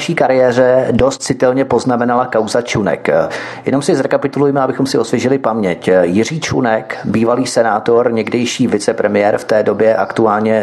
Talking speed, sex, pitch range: 130 wpm, male, 110-130 Hz